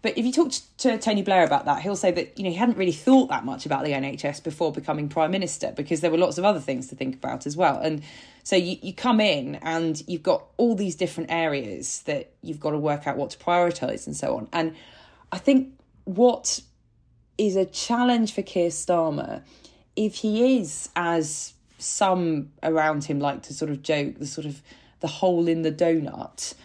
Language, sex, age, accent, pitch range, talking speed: English, female, 20-39, British, 145-185 Hz, 210 wpm